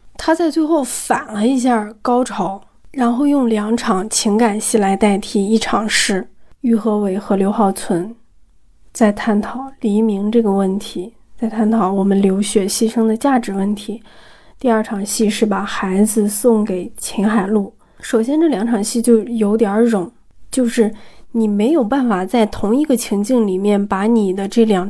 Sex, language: female, Chinese